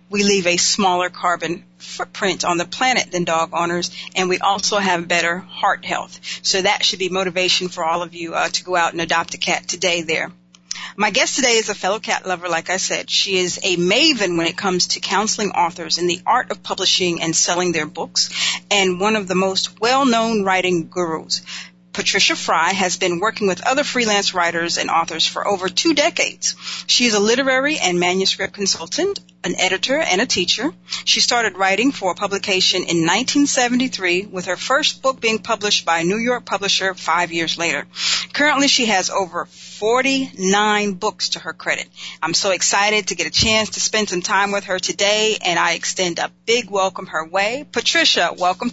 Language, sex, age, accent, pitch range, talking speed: English, female, 40-59, American, 175-215 Hz, 195 wpm